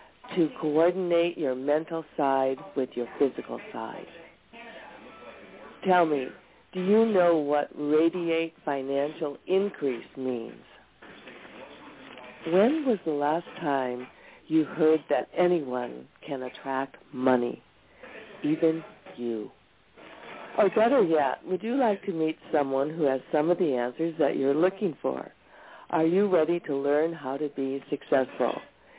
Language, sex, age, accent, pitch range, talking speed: English, female, 60-79, American, 135-175 Hz, 125 wpm